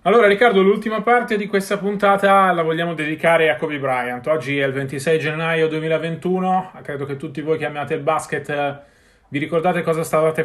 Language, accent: Italian, native